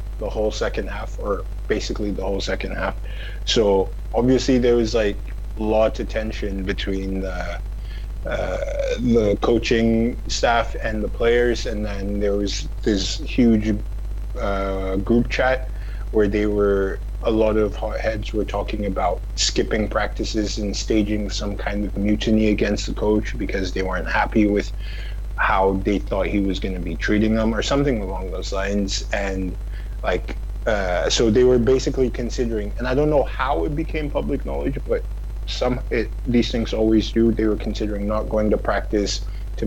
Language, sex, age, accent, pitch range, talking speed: English, male, 20-39, American, 100-110 Hz, 165 wpm